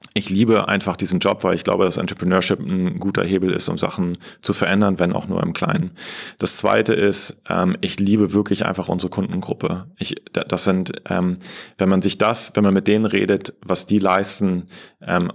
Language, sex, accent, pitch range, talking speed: German, male, German, 90-100 Hz, 190 wpm